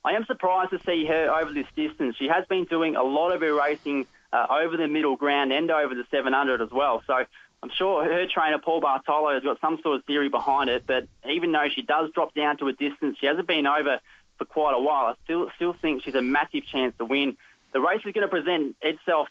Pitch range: 135-170 Hz